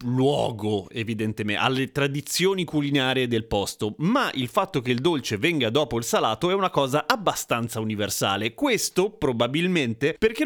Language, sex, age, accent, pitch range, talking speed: Italian, male, 30-49, native, 120-160 Hz, 145 wpm